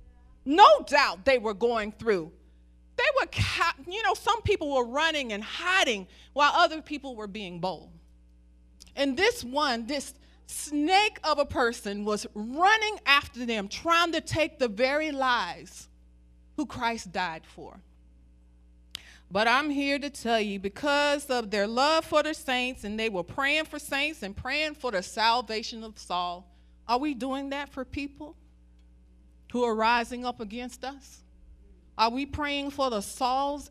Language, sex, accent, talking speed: English, female, American, 155 wpm